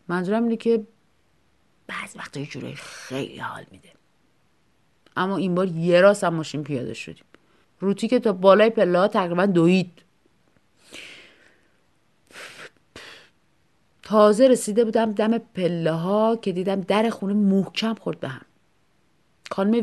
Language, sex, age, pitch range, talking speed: Persian, female, 30-49, 175-235 Hz, 120 wpm